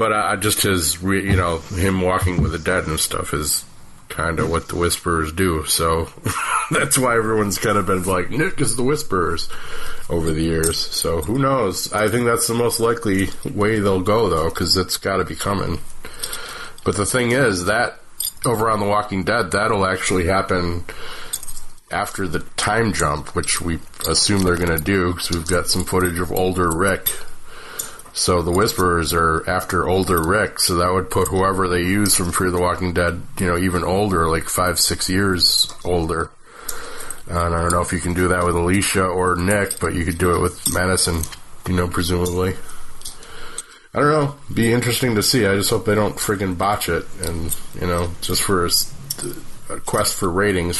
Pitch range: 85-105 Hz